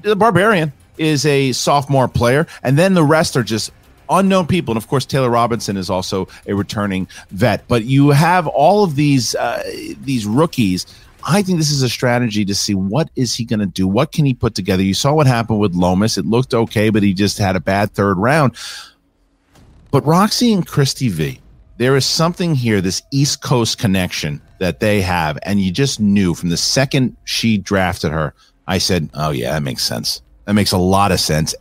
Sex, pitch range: male, 105-150 Hz